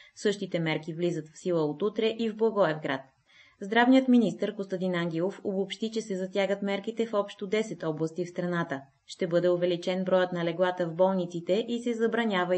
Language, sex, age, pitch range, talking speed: Bulgarian, female, 20-39, 165-210 Hz, 170 wpm